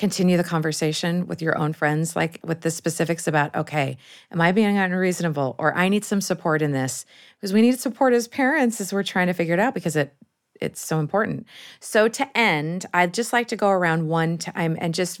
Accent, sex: American, female